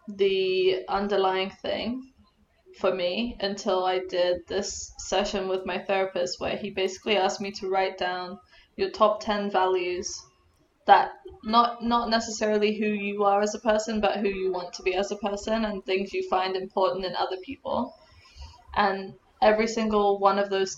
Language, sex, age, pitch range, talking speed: English, female, 10-29, 185-210 Hz, 170 wpm